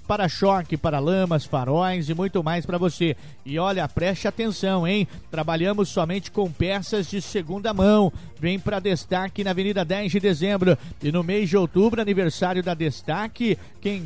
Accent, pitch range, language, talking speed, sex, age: Brazilian, 175-210 Hz, Portuguese, 160 wpm, male, 50-69